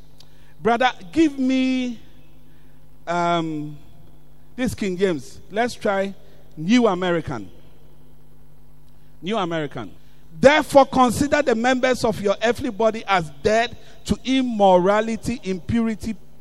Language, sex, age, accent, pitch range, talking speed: English, male, 50-69, Nigerian, 165-245 Hz, 95 wpm